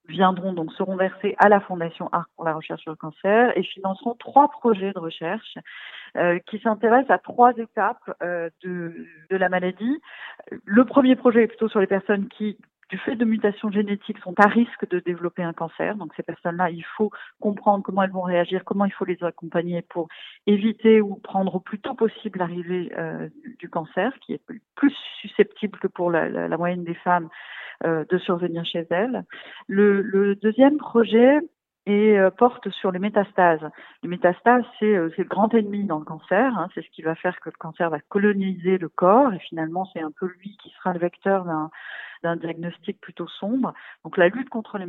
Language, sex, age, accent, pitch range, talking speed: French, female, 40-59, French, 175-220 Hz, 200 wpm